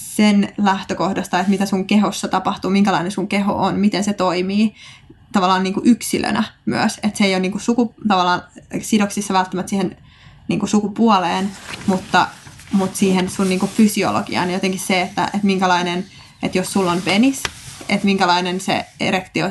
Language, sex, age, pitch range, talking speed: Finnish, female, 20-39, 185-200 Hz, 165 wpm